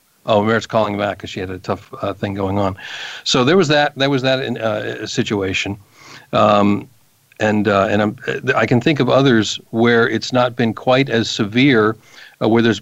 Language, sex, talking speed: English, male, 195 wpm